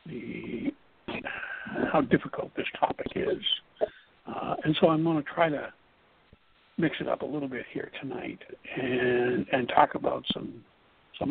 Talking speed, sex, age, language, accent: 150 wpm, male, 60-79, English, American